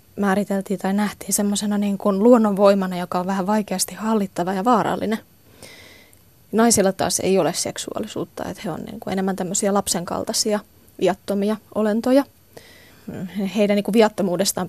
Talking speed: 125 wpm